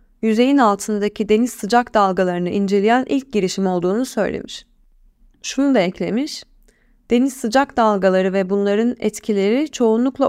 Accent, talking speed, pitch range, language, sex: native, 115 wpm, 195-245 Hz, Turkish, female